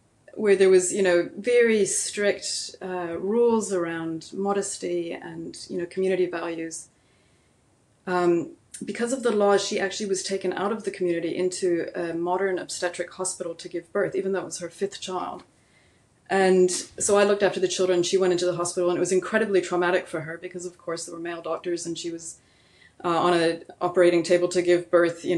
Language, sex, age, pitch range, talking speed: English, female, 20-39, 175-200 Hz, 195 wpm